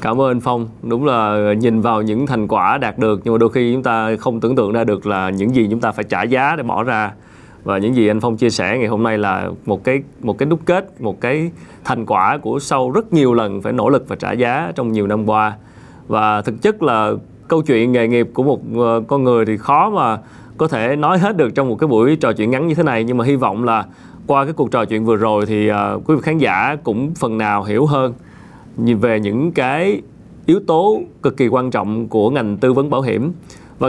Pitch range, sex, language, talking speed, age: 110-155 Hz, male, Vietnamese, 250 wpm, 20-39